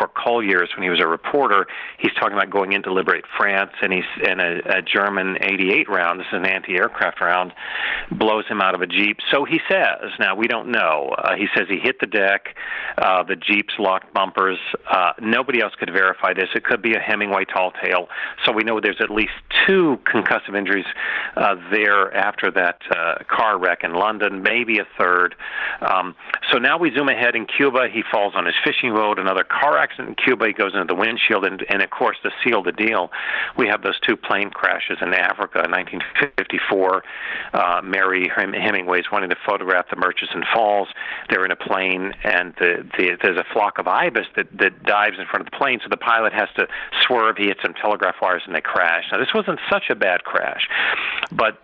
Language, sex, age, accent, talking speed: English, male, 40-59, American, 210 wpm